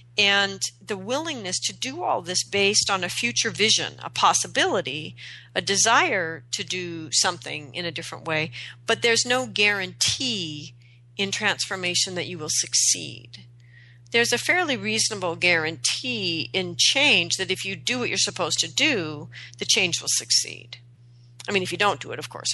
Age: 40-59